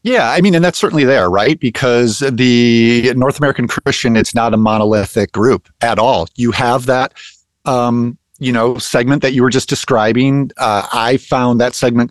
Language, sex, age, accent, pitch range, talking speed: English, male, 40-59, American, 110-135 Hz, 185 wpm